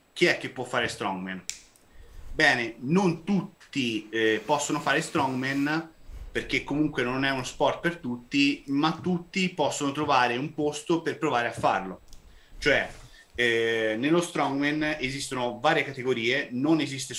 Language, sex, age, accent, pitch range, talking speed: Italian, male, 30-49, native, 120-150 Hz, 140 wpm